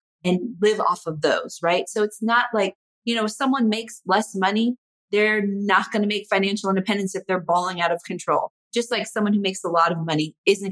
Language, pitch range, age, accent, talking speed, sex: English, 175-215 Hz, 30-49, American, 225 wpm, female